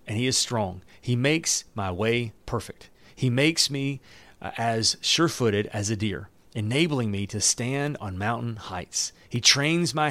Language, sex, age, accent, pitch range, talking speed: English, male, 40-59, American, 105-140 Hz, 160 wpm